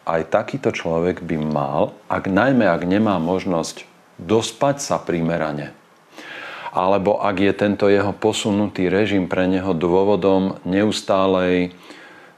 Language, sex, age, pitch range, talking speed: Slovak, male, 40-59, 85-100 Hz, 115 wpm